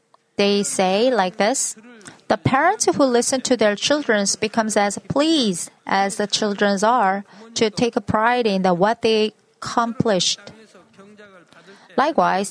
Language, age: Korean, 30-49